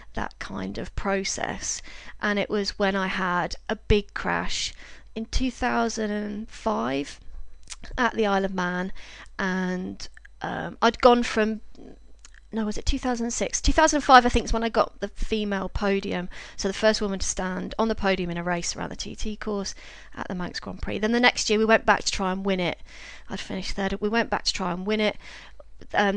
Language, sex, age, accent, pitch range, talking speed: English, female, 30-49, British, 195-220 Hz, 195 wpm